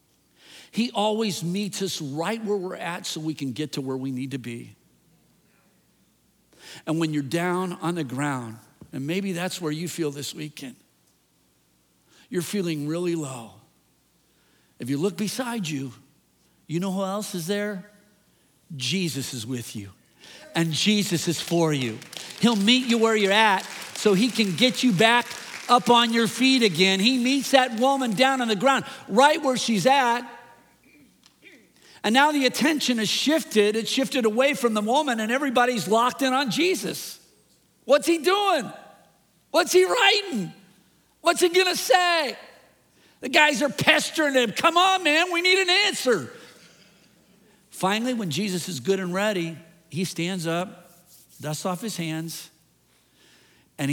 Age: 50-69